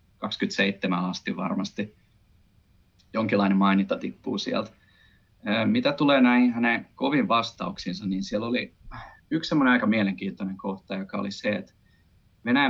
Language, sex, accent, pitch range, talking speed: Finnish, male, native, 100-145 Hz, 120 wpm